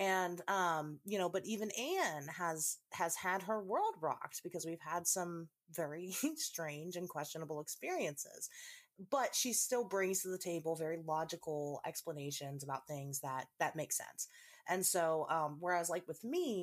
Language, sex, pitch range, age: English, female, 155-225 Hz, 30-49